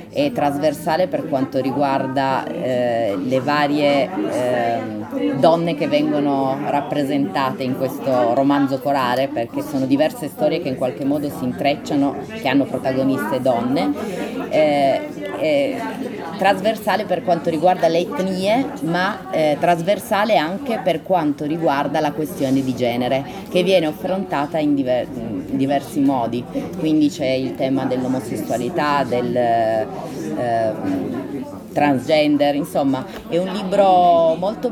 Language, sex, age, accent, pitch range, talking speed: Italian, female, 30-49, native, 135-180 Hz, 120 wpm